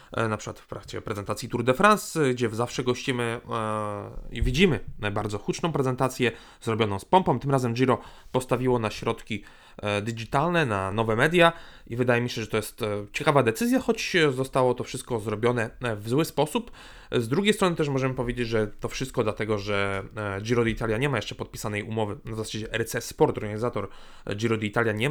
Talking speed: 170 wpm